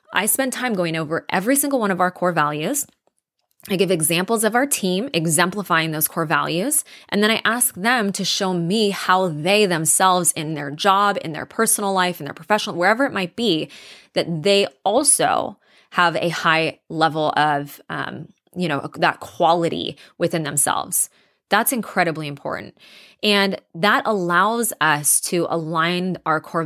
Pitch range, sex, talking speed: 160-205 Hz, female, 165 wpm